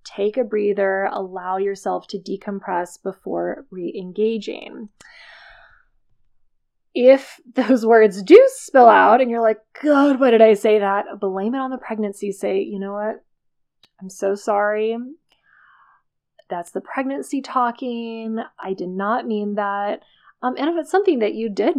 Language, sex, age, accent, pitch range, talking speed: English, female, 20-39, American, 200-255 Hz, 145 wpm